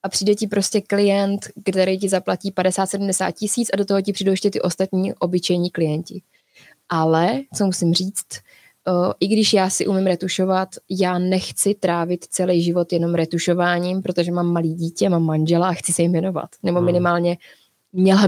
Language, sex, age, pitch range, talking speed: Czech, female, 20-39, 175-195 Hz, 165 wpm